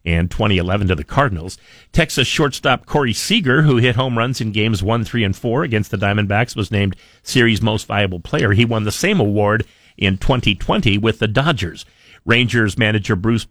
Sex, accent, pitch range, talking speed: male, American, 100-115 Hz, 180 wpm